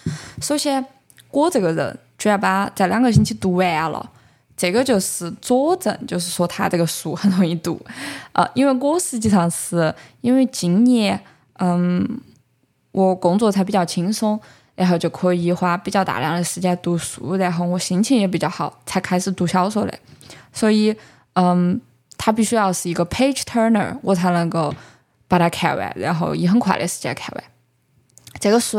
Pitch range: 175-220 Hz